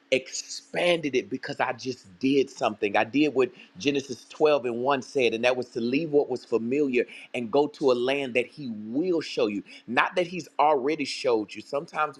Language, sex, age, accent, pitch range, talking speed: English, male, 30-49, American, 130-200 Hz, 195 wpm